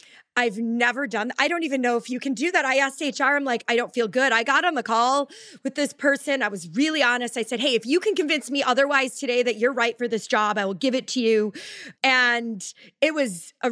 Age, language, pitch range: 20-39, English, 230-280 Hz